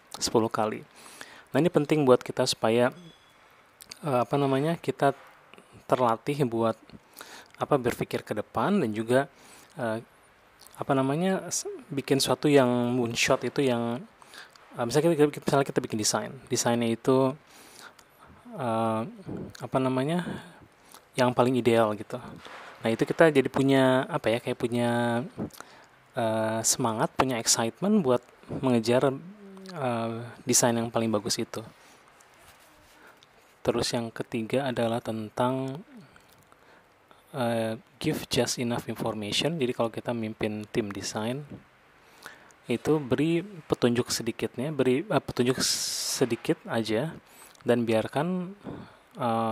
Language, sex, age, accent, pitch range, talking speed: Indonesian, male, 20-39, native, 115-140 Hz, 115 wpm